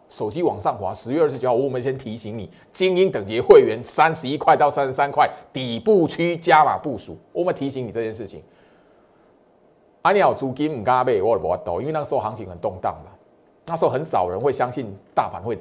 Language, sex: Chinese, male